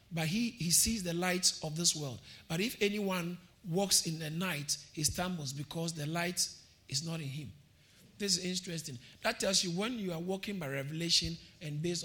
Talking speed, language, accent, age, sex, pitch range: 195 wpm, English, Nigerian, 50-69, male, 135-195 Hz